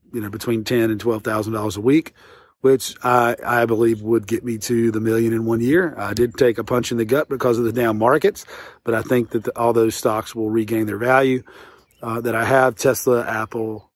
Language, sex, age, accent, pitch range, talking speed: English, male, 40-59, American, 110-125 Hz, 225 wpm